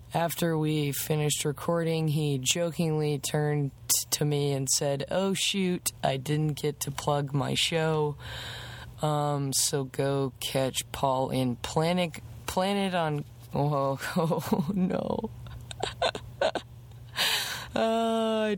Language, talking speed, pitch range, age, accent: English, 105 wpm, 120-155 Hz, 20-39, American